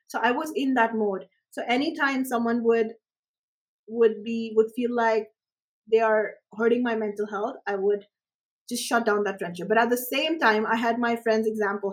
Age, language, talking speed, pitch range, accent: 20-39, English, 195 wpm, 220-275 Hz, Indian